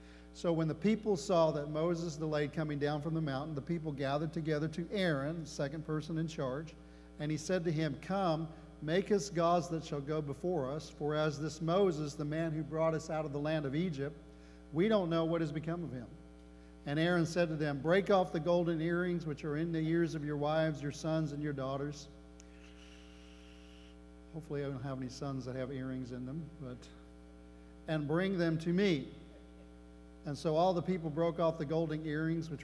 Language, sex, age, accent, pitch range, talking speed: English, male, 50-69, American, 135-165 Hz, 205 wpm